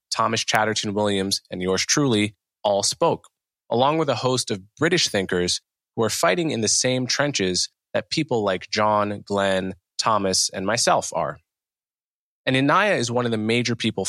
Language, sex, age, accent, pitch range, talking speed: English, male, 20-39, American, 95-130 Hz, 165 wpm